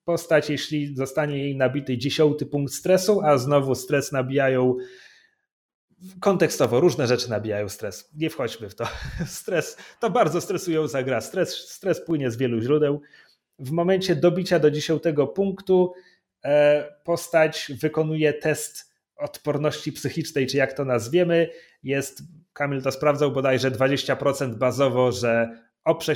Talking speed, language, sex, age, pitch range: 130 wpm, Polish, male, 30-49, 135-170 Hz